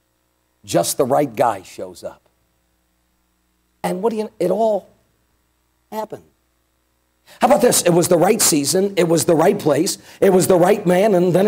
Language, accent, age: English, American, 50-69